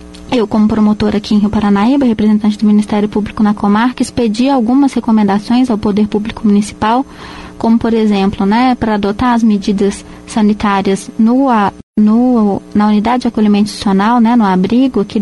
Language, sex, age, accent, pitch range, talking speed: Portuguese, female, 20-39, Brazilian, 210-235 Hz, 160 wpm